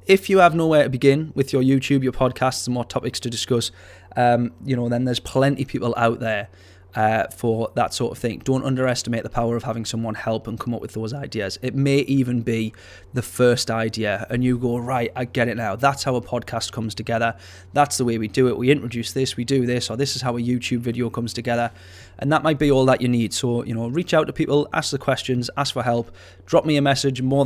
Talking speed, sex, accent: 250 wpm, male, British